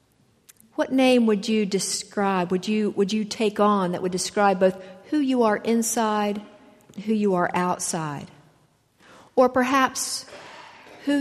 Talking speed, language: 140 wpm, English